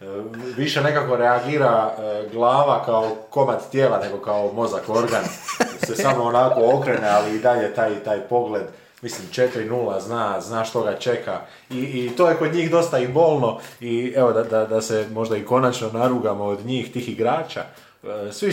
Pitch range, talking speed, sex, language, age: 105-125 Hz, 170 wpm, male, Croatian, 20-39